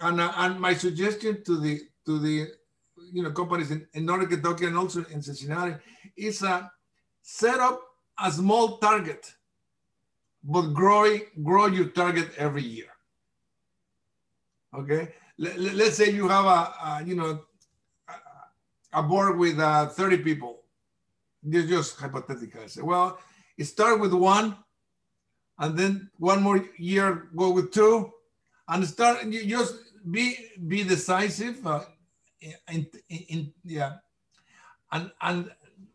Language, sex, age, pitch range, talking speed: English, male, 50-69, 160-200 Hz, 145 wpm